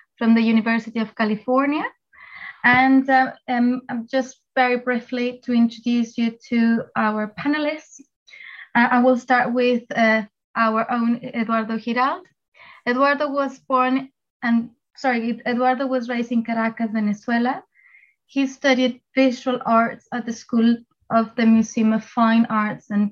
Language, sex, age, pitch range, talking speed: English, female, 20-39, 225-255 Hz, 135 wpm